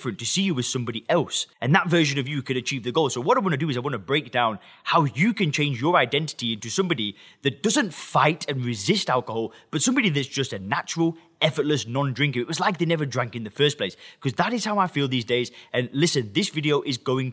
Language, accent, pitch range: English, British, 125-165 Hz